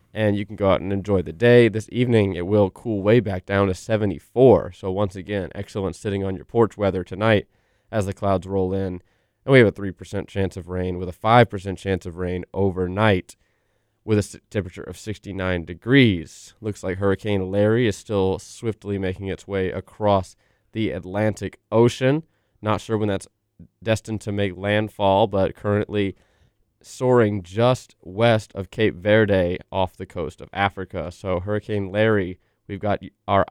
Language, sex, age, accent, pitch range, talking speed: English, male, 20-39, American, 95-110 Hz, 170 wpm